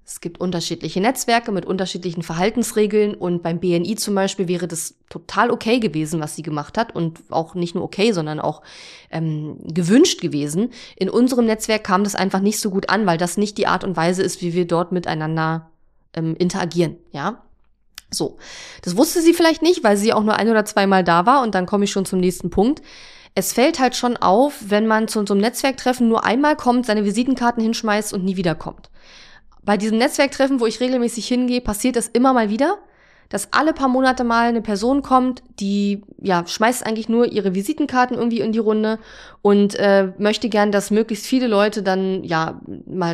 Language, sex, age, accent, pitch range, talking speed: German, female, 20-39, German, 180-230 Hz, 195 wpm